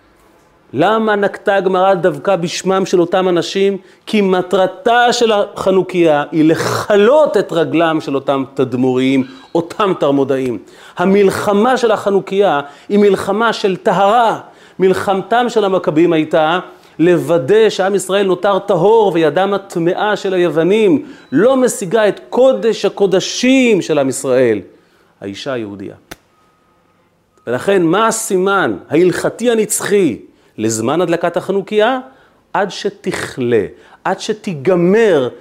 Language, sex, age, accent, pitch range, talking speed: Hebrew, male, 30-49, native, 130-200 Hz, 105 wpm